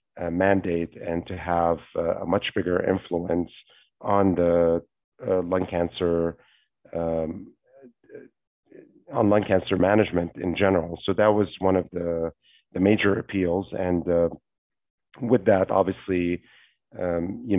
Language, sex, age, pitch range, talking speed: English, male, 40-59, 85-95 Hz, 130 wpm